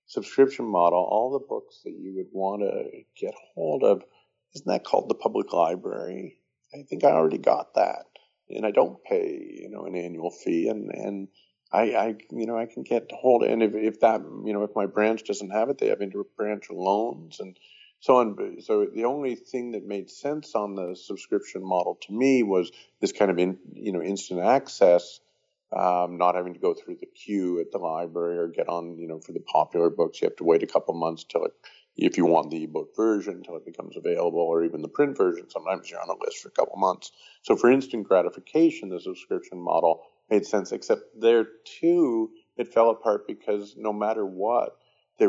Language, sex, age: English, male, 50-69